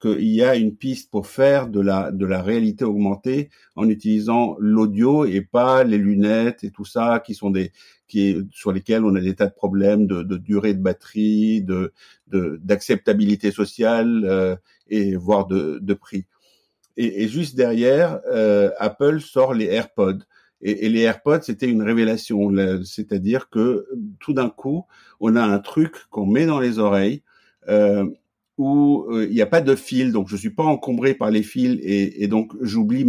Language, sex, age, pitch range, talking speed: French, male, 50-69, 105-140 Hz, 190 wpm